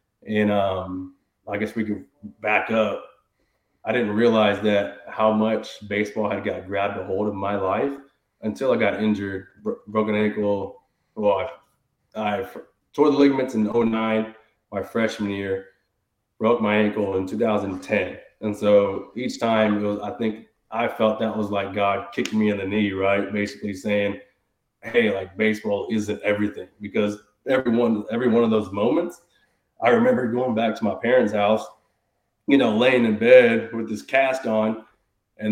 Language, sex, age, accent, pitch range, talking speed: English, male, 20-39, American, 100-110 Hz, 170 wpm